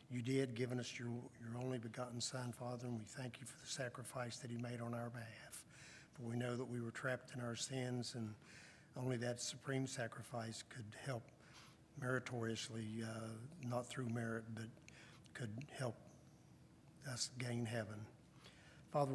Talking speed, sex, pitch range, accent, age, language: 165 wpm, male, 115-125 Hz, American, 50-69, English